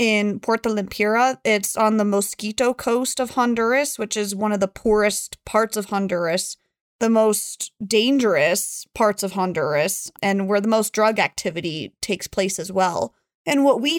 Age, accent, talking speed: 20-39, American, 165 wpm